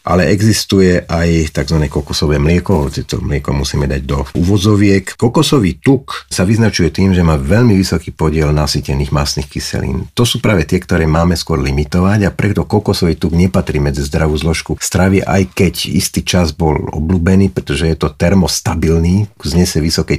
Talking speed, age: 165 wpm, 50-69